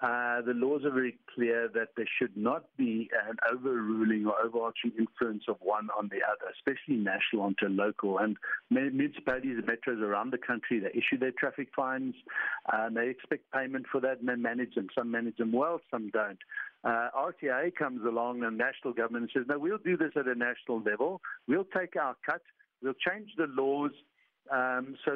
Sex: male